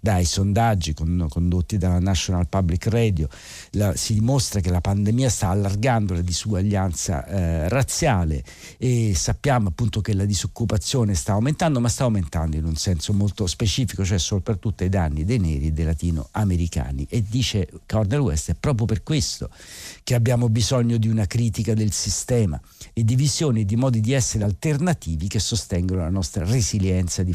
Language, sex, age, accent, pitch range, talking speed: Italian, male, 50-69, native, 90-115 Hz, 160 wpm